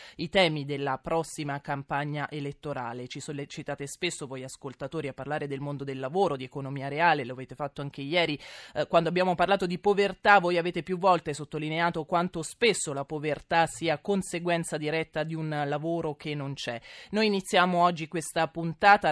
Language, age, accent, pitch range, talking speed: Italian, 20-39, native, 145-175 Hz, 170 wpm